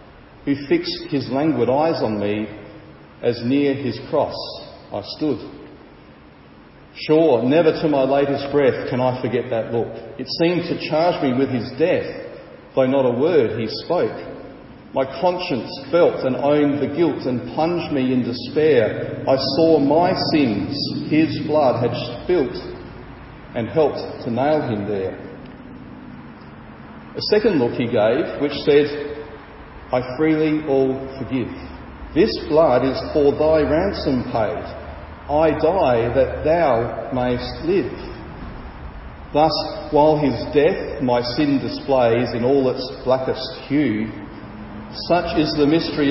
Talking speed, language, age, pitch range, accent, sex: 135 wpm, English, 40-59, 115-150 Hz, Australian, male